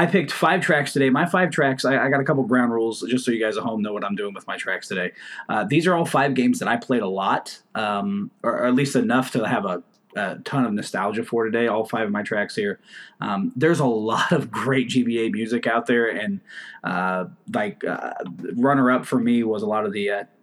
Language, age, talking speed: English, 20-39, 240 wpm